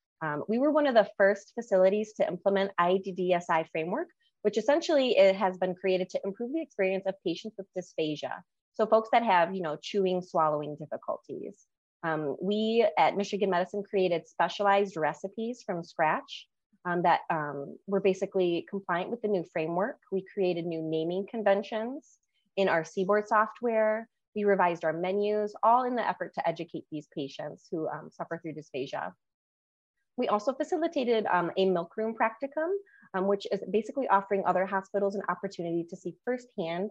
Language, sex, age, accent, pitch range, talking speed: English, female, 30-49, American, 165-215 Hz, 165 wpm